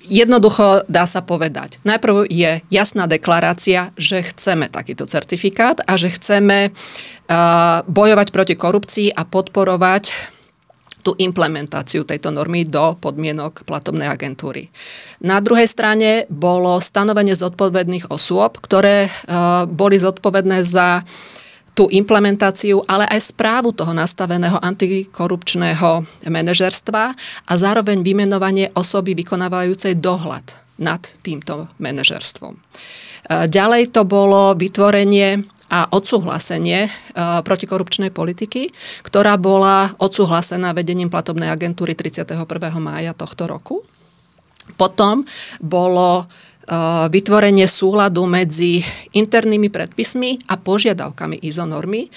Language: Slovak